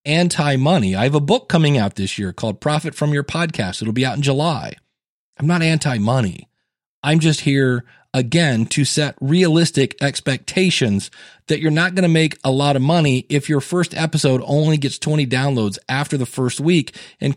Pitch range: 130-170 Hz